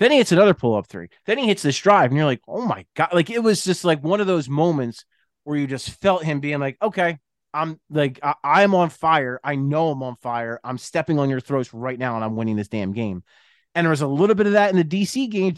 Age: 30-49